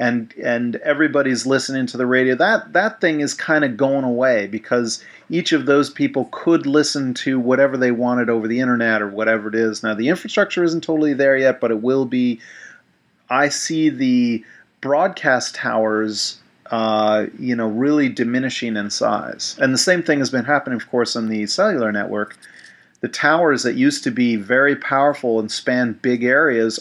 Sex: male